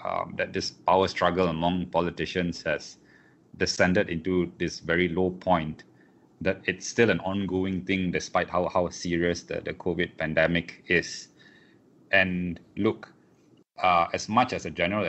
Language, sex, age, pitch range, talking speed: English, male, 20-39, 85-95 Hz, 145 wpm